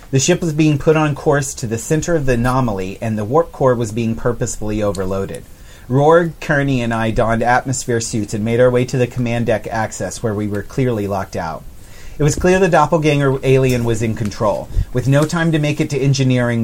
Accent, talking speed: American, 215 wpm